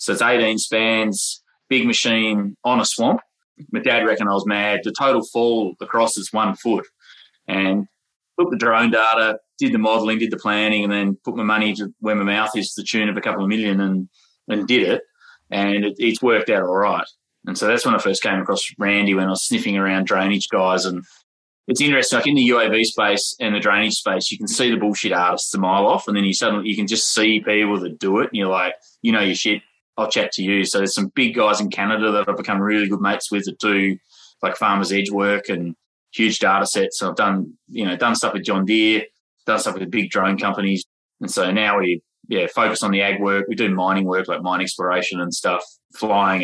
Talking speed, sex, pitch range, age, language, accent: 230 wpm, male, 95-110 Hz, 20-39, English, Australian